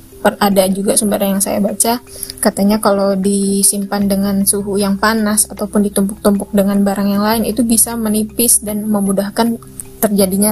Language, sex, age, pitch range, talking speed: Indonesian, female, 20-39, 200-230 Hz, 145 wpm